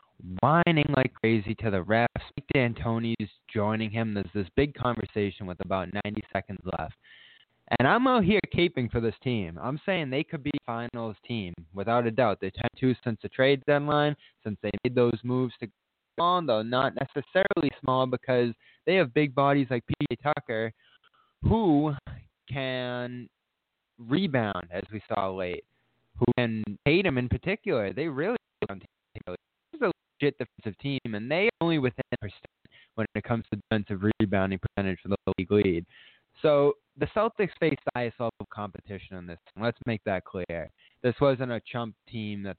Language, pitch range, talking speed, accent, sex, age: English, 105-135 Hz, 170 wpm, American, male, 20-39